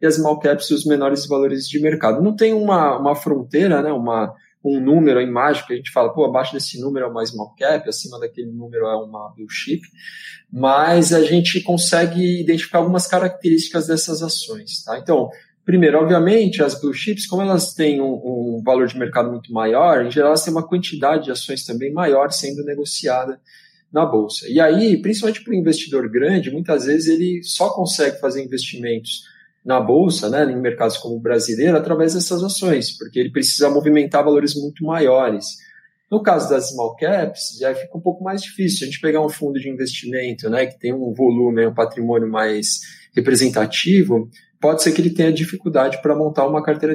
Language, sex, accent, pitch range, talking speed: Portuguese, male, Brazilian, 130-175 Hz, 190 wpm